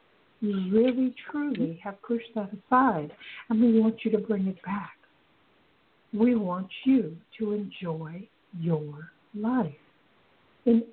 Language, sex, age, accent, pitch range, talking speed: English, female, 60-79, American, 180-230 Hz, 125 wpm